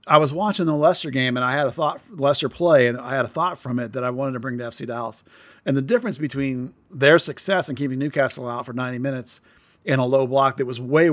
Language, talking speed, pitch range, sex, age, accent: English, 260 wpm, 130-155 Hz, male, 40-59, American